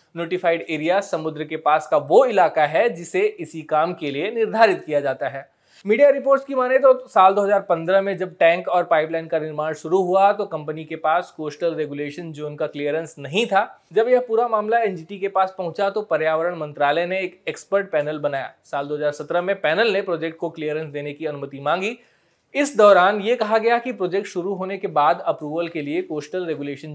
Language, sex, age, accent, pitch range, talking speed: Hindi, male, 20-39, native, 155-205 Hz, 200 wpm